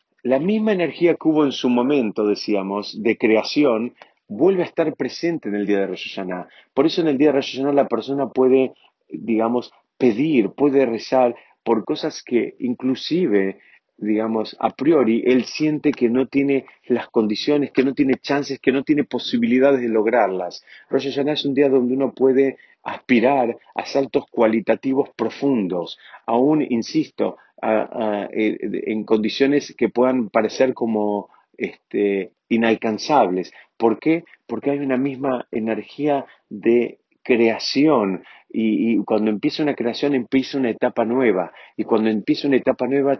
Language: Spanish